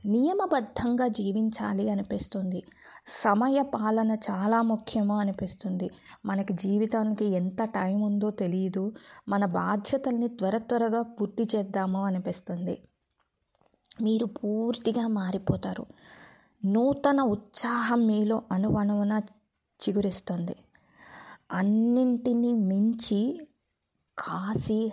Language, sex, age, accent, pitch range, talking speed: Telugu, female, 20-39, native, 200-235 Hz, 70 wpm